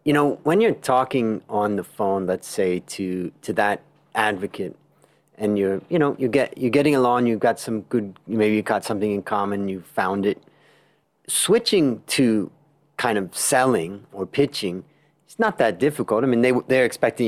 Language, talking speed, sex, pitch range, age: English, 180 wpm, male, 100-130 Hz, 40-59